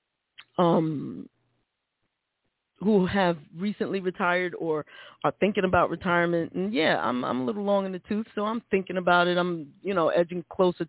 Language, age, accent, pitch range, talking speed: English, 20-39, American, 165-205 Hz, 165 wpm